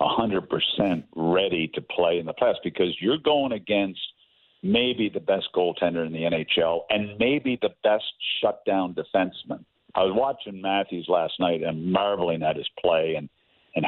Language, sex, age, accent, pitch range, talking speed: English, male, 50-69, American, 95-130 Hz, 165 wpm